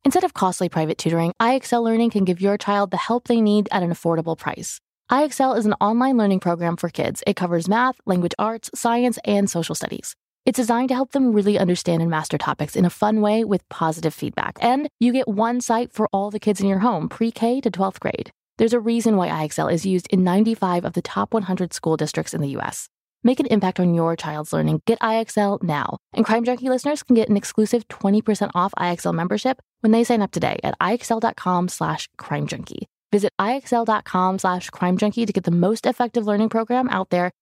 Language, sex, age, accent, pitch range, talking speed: English, female, 20-39, American, 180-230 Hz, 215 wpm